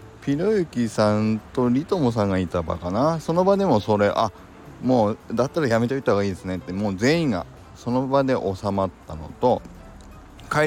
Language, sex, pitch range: Japanese, male, 90-135 Hz